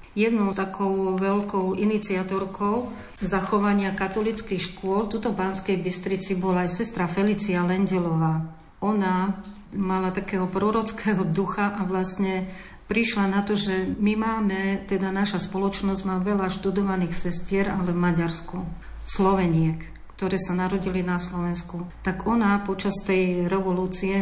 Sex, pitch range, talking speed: female, 180-200 Hz, 125 wpm